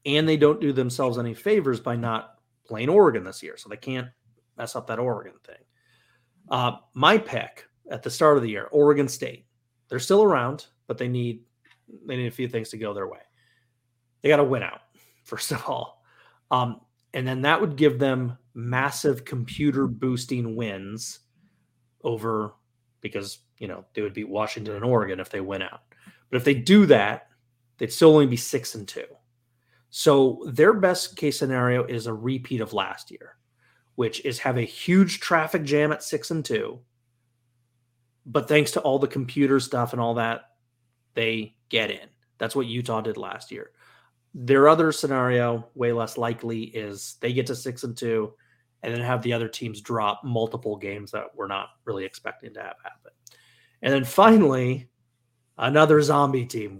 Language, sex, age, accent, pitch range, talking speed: English, male, 30-49, American, 115-140 Hz, 180 wpm